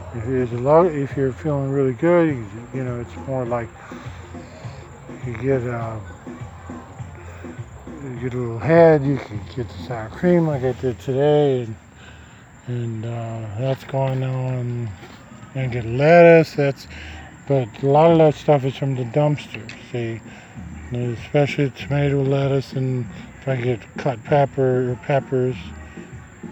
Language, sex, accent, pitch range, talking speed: English, male, American, 120-145 Hz, 135 wpm